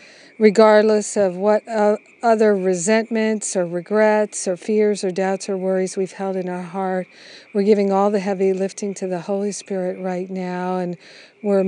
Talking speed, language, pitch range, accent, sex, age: 165 wpm, English, 185-210 Hz, American, female, 50-69